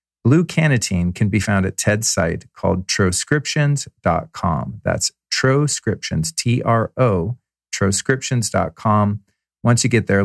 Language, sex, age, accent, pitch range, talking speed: English, male, 40-59, American, 100-125 Hz, 105 wpm